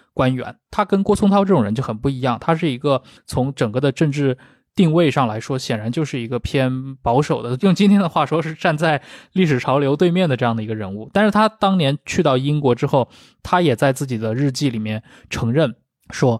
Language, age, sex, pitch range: Chinese, 20-39, male, 120-160 Hz